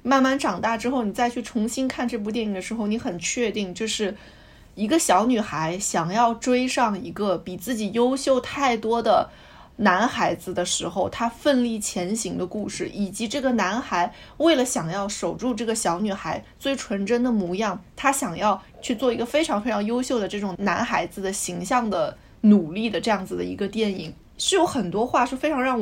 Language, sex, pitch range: Chinese, female, 195-265 Hz